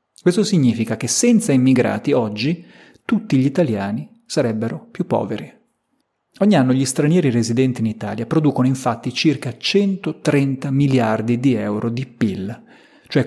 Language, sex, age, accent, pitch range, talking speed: Italian, male, 40-59, native, 115-150 Hz, 130 wpm